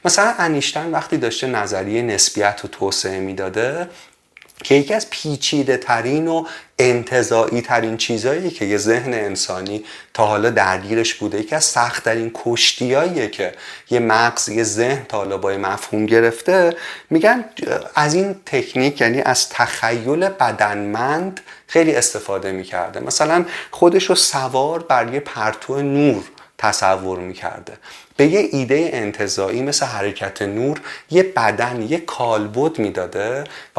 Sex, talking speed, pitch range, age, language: male, 130 wpm, 105-155 Hz, 30-49, Persian